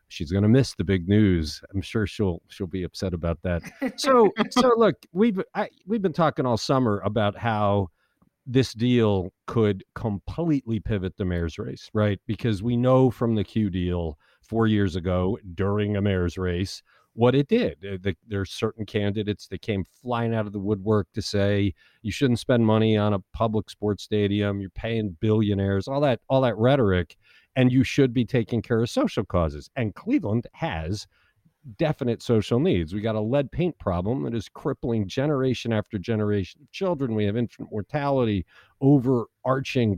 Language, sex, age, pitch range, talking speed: English, male, 50-69, 100-135 Hz, 175 wpm